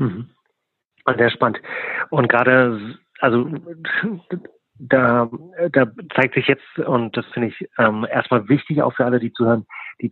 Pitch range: 105-125 Hz